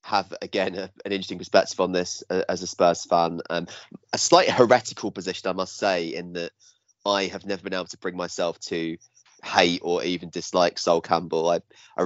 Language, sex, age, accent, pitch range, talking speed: English, male, 20-39, British, 85-100 Hz, 205 wpm